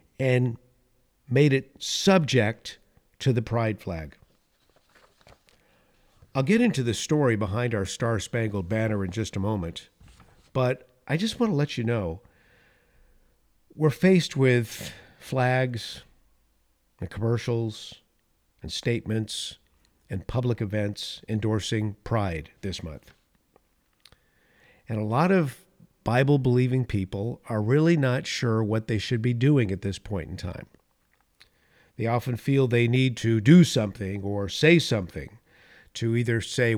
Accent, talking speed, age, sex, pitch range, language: American, 125 wpm, 50-69, male, 105-135 Hz, English